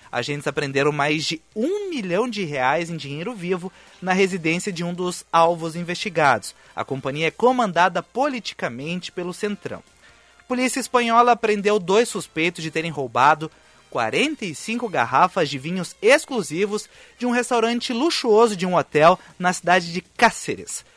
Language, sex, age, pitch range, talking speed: Portuguese, male, 30-49, 160-215 Hz, 145 wpm